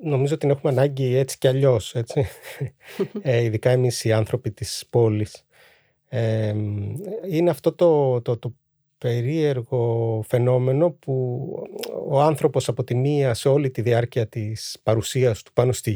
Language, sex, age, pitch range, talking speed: Greek, male, 30-49, 120-155 Hz, 145 wpm